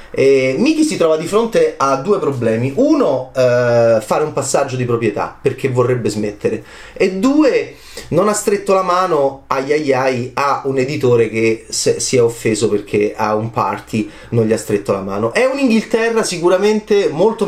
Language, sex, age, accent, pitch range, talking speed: Italian, male, 30-49, native, 125-180 Hz, 160 wpm